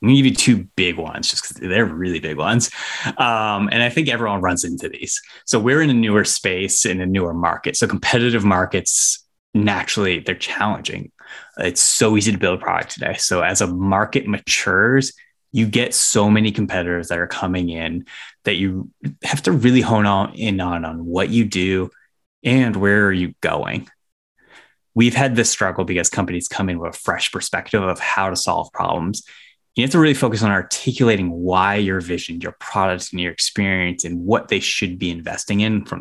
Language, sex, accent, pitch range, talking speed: English, male, American, 90-115 Hz, 195 wpm